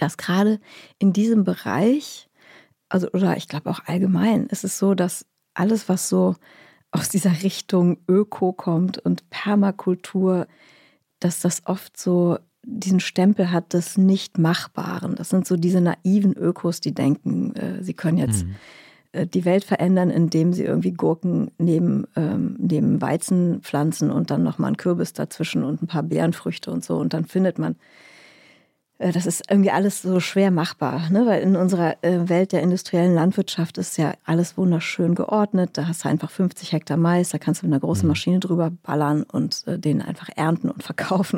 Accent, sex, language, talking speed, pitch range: German, female, German, 170 wpm, 165-190 Hz